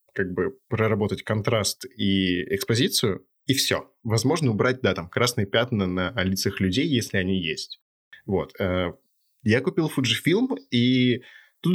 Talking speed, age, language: 135 wpm, 20-39, Russian